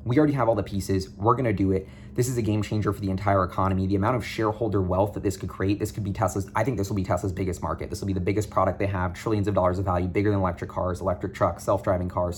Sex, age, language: male, 20-39, English